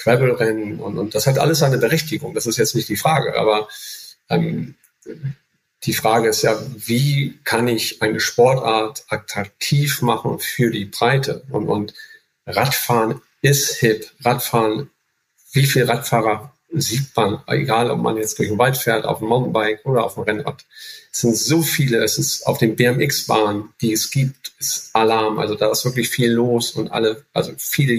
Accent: German